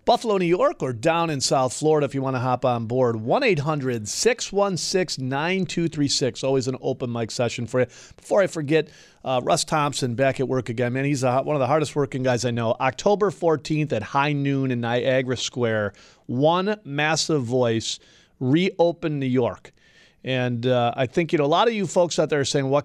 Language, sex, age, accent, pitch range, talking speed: English, male, 40-59, American, 120-150 Hz, 190 wpm